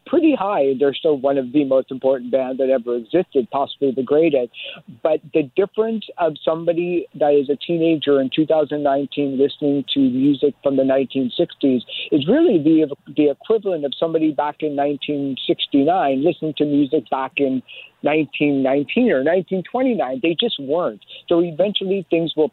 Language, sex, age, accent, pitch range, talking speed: English, male, 50-69, American, 135-160 Hz, 155 wpm